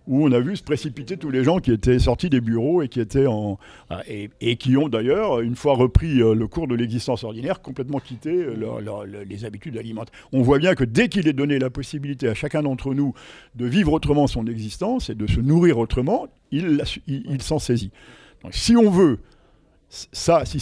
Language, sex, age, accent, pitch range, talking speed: French, male, 50-69, French, 115-155 Hz, 185 wpm